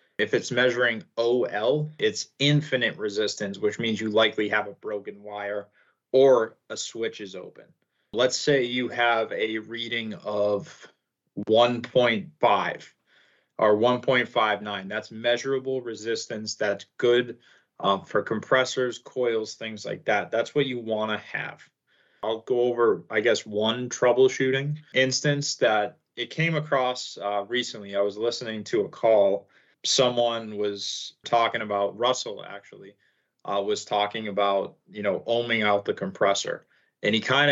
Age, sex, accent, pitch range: 20-39, male, American, 105-130 Hz